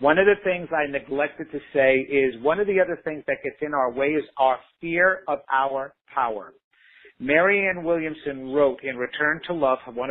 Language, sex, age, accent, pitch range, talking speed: English, male, 50-69, American, 135-170 Hz, 195 wpm